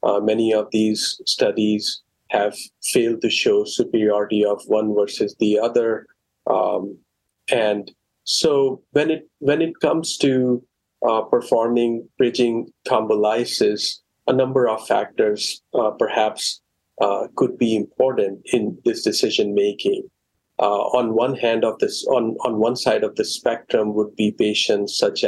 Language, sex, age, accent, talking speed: English, male, 40-59, Indian, 140 wpm